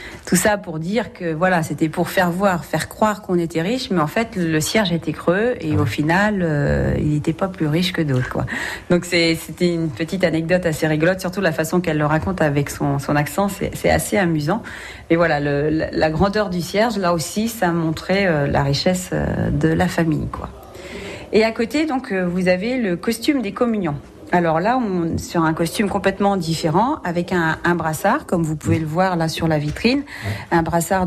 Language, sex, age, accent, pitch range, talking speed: French, female, 40-59, French, 160-200 Hz, 210 wpm